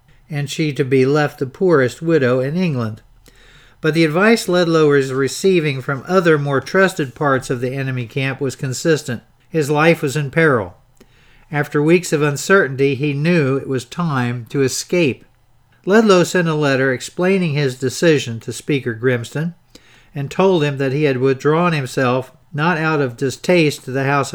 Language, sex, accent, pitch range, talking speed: English, male, American, 130-160 Hz, 170 wpm